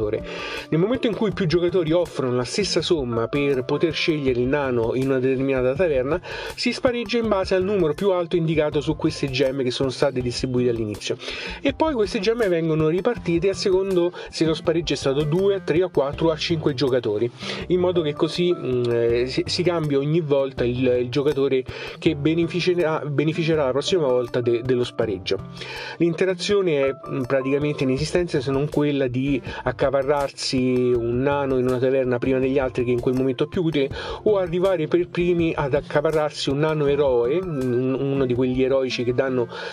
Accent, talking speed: native, 170 wpm